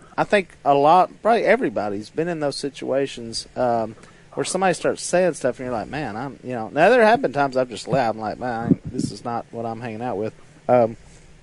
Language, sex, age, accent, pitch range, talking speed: English, male, 40-59, American, 120-150 Hz, 230 wpm